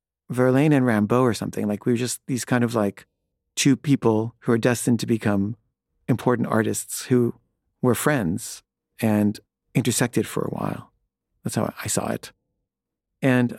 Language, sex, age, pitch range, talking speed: English, male, 50-69, 115-135 Hz, 160 wpm